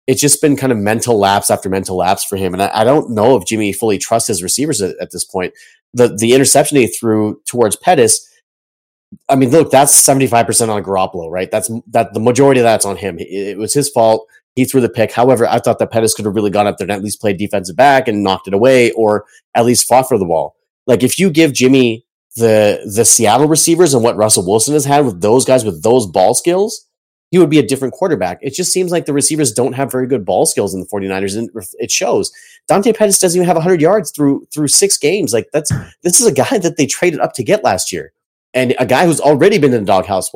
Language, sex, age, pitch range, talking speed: English, male, 30-49, 110-150 Hz, 250 wpm